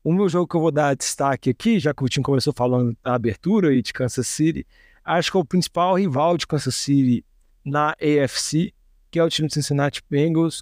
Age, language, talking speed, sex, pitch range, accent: 20-39, Portuguese, 220 wpm, male, 135-160 Hz, Brazilian